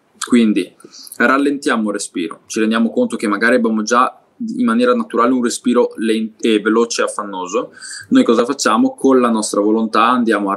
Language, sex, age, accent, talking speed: Italian, male, 20-39, native, 170 wpm